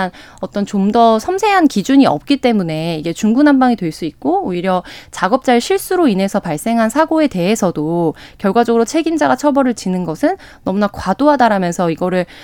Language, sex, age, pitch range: Korean, female, 20-39, 185-290 Hz